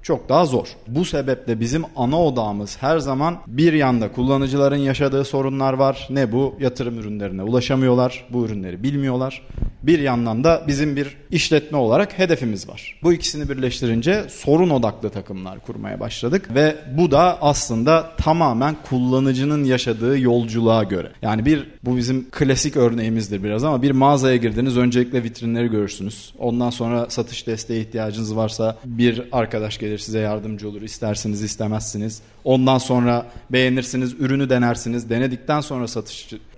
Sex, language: male, Turkish